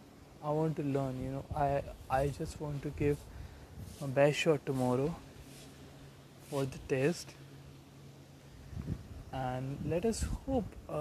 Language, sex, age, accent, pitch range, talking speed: Hindi, male, 20-39, native, 135-160 Hz, 125 wpm